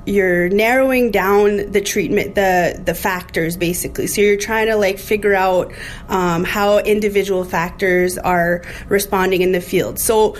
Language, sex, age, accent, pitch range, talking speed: English, female, 30-49, American, 190-220 Hz, 150 wpm